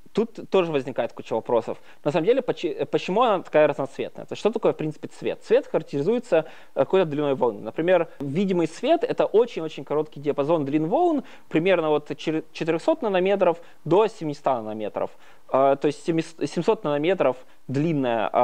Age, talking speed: 20-39, 145 wpm